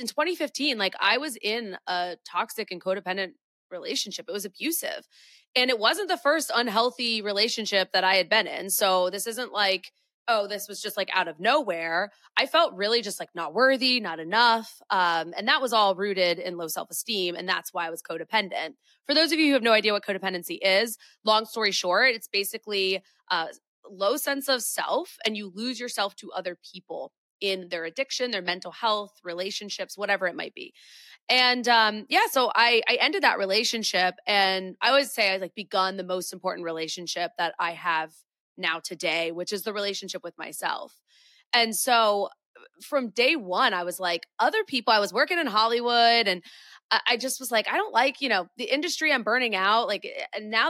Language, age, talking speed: English, 20-39, 195 wpm